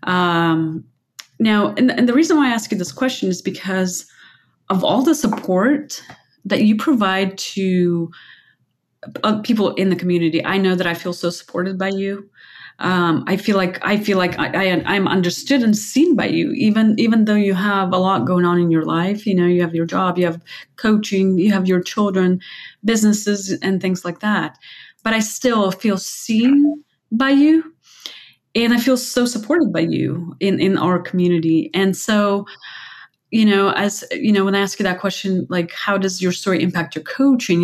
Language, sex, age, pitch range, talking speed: English, female, 30-49, 180-230 Hz, 190 wpm